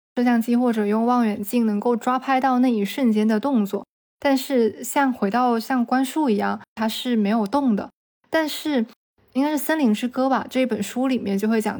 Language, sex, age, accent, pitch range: Chinese, female, 20-39, native, 210-255 Hz